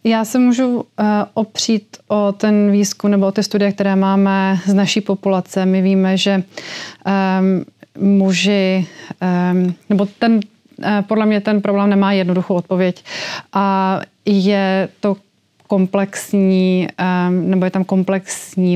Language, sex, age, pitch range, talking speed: Slovak, female, 30-49, 185-200 Hz, 130 wpm